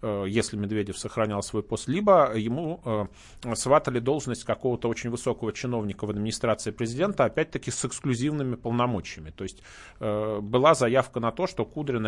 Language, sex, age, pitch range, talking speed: Russian, male, 30-49, 110-135 Hz, 140 wpm